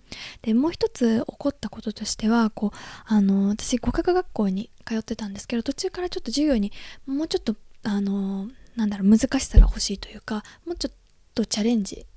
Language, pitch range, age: Japanese, 210-265 Hz, 20-39